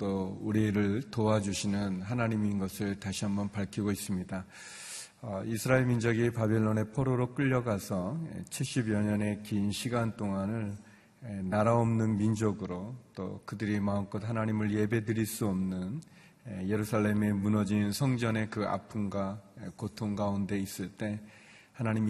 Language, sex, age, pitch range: Korean, male, 30-49, 100-115 Hz